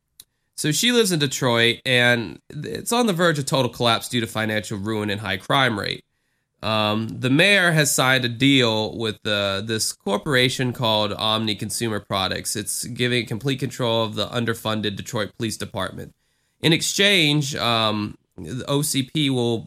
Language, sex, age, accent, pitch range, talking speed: English, male, 20-39, American, 115-155 Hz, 160 wpm